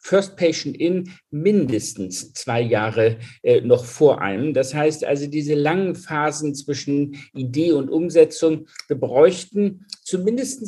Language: German